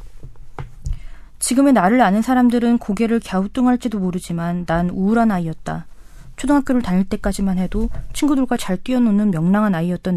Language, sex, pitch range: Korean, female, 180-230 Hz